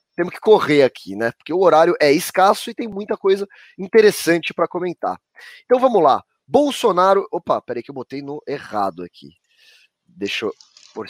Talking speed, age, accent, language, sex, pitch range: 175 wpm, 20-39, Brazilian, Portuguese, male, 145-215 Hz